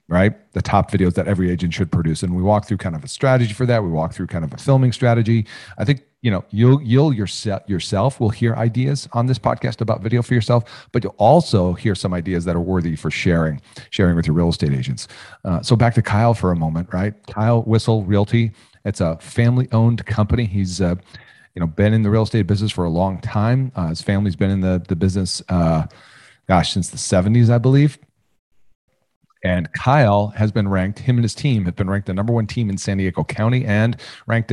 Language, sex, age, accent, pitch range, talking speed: English, male, 40-59, American, 90-115 Hz, 225 wpm